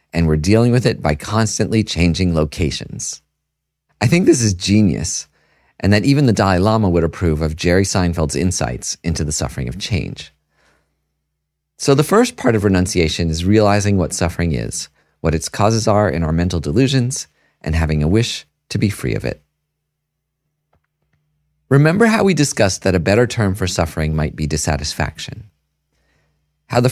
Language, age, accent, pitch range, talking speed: English, 40-59, American, 75-115 Hz, 165 wpm